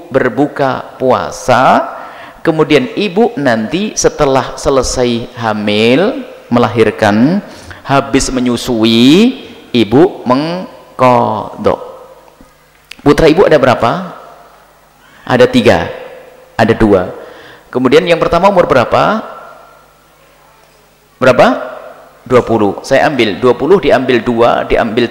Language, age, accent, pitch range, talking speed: Indonesian, 40-59, native, 125-175 Hz, 85 wpm